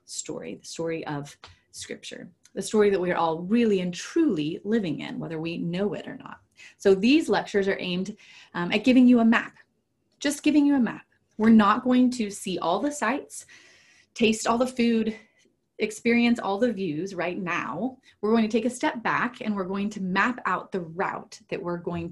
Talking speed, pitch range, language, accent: 200 wpm, 175-230 Hz, English, American